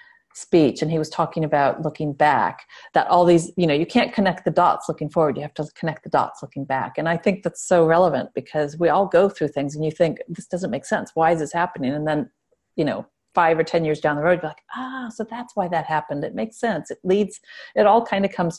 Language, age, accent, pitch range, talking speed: English, 40-59, American, 160-200 Hz, 260 wpm